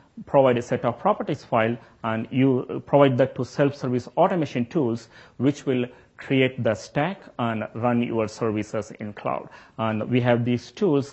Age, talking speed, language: 30-49, 160 wpm, English